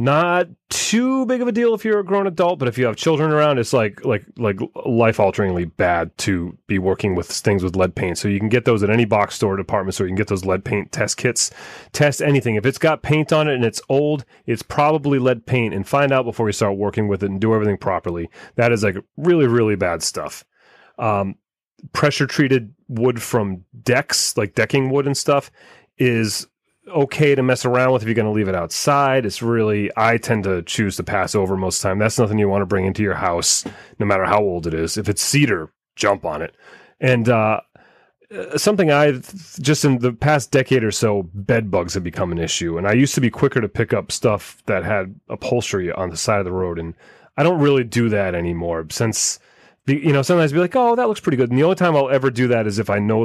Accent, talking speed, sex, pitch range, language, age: American, 235 wpm, male, 100-140 Hz, English, 30-49